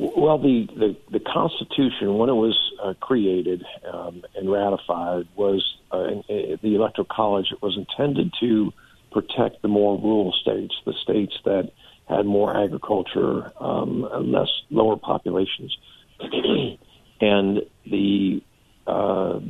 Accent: American